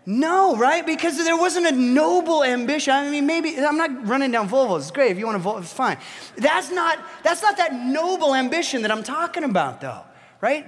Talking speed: 215 wpm